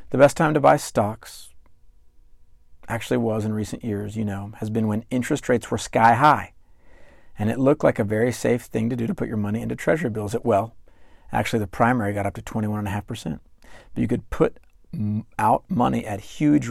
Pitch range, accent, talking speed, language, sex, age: 80-120 Hz, American, 195 wpm, English, male, 40-59